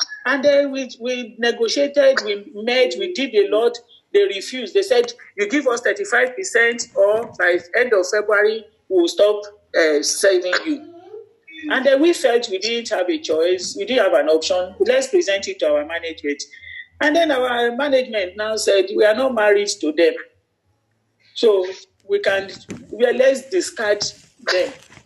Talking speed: 165 wpm